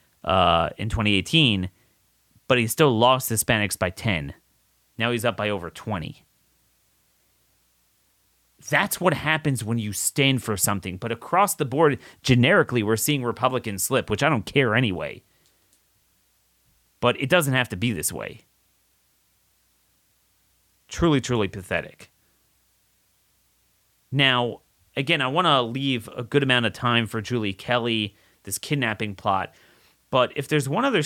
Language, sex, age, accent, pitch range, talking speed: English, male, 30-49, American, 105-140 Hz, 135 wpm